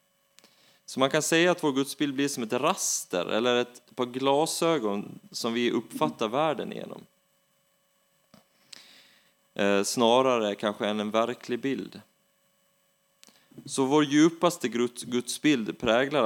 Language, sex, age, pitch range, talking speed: Swedish, male, 30-49, 110-150 Hz, 115 wpm